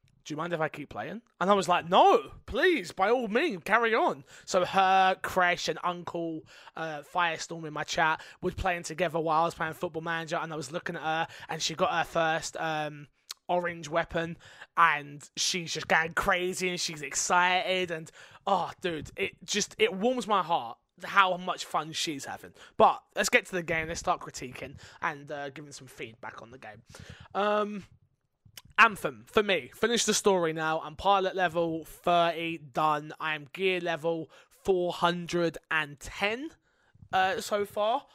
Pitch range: 155-190 Hz